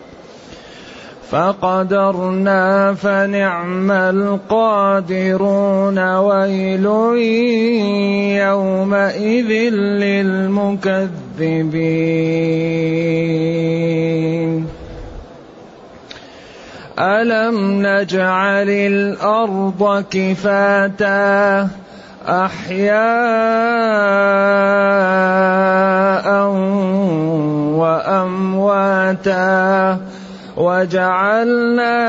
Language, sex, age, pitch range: Arabic, male, 30-49, 165-200 Hz